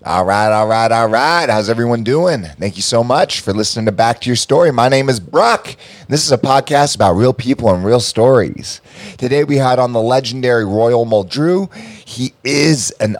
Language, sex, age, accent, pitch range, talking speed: English, male, 30-49, American, 90-125 Hz, 205 wpm